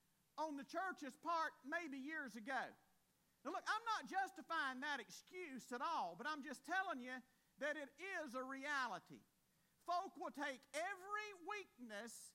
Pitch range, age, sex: 265-355 Hz, 50-69, male